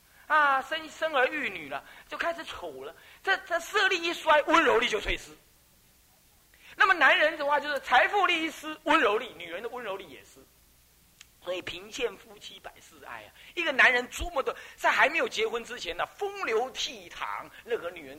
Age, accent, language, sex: 40-59, native, Chinese, male